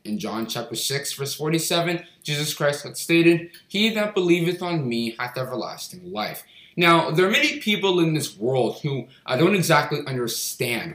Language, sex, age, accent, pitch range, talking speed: English, male, 20-39, American, 130-170 Hz, 170 wpm